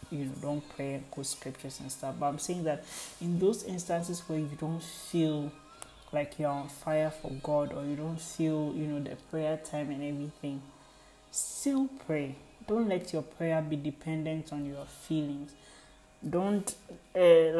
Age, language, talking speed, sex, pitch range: 20-39, English, 170 wpm, male, 140-160 Hz